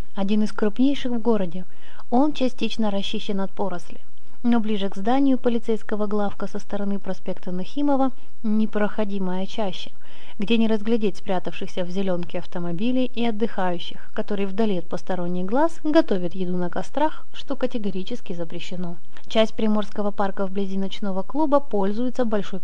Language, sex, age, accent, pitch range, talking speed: Russian, female, 20-39, native, 185-230 Hz, 135 wpm